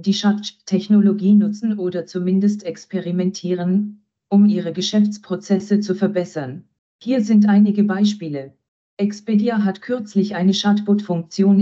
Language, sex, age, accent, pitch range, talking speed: German, female, 40-59, German, 185-210 Hz, 105 wpm